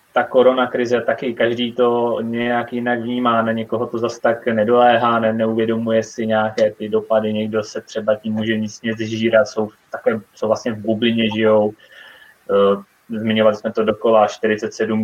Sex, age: male, 20-39